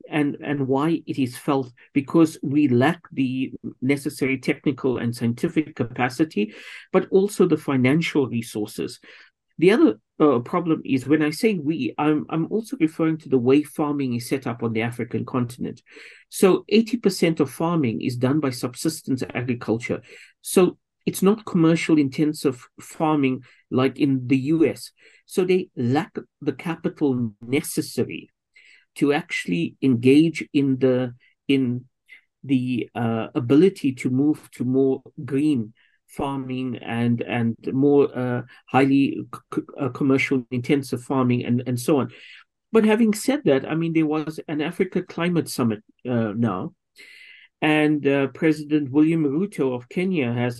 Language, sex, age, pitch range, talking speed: English, male, 50-69, 130-155 Hz, 140 wpm